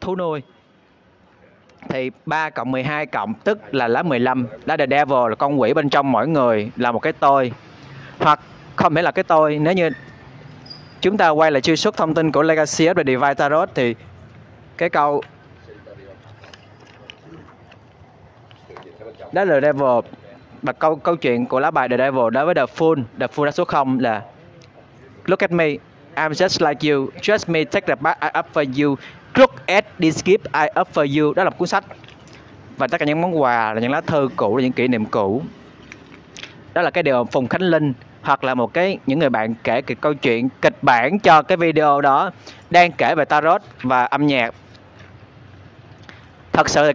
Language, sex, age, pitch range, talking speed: Vietnamese, male, 20-39, 125-165 Hz, 190 wpm